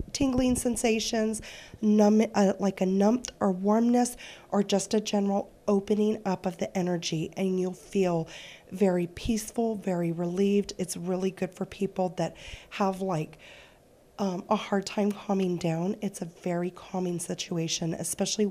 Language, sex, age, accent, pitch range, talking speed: English, female, 30-49, American, 175-205 Hz, 145 wpm